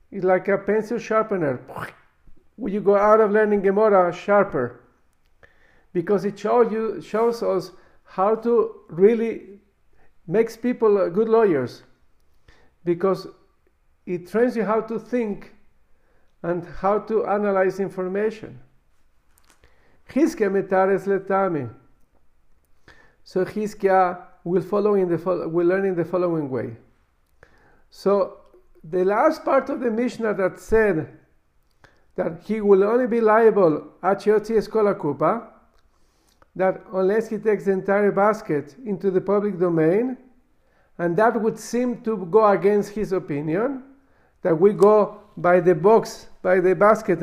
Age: 50-69